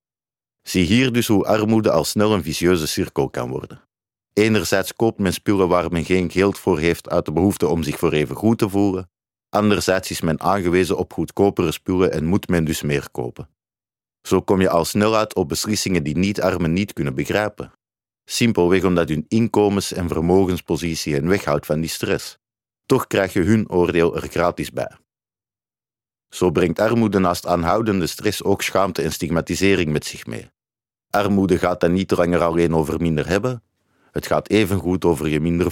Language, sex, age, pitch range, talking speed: Dutch, male, 50-69, 85-100 Hz, 175 wpm